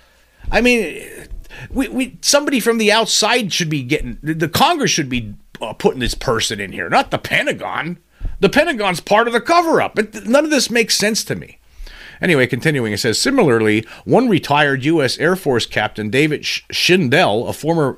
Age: 50-69